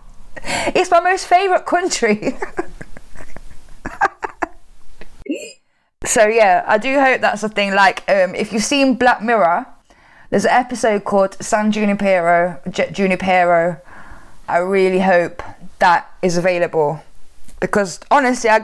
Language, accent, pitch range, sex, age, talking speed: English, British, 190-260 Hz, female, 10-29, 115 wpm